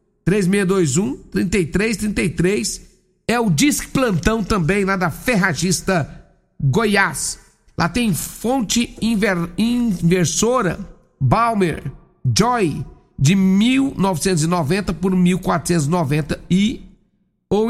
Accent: Brazilian